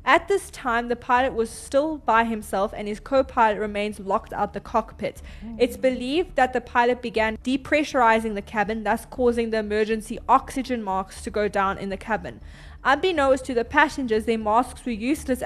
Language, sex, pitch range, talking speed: English, female, 215-255 Hz, 180 wpm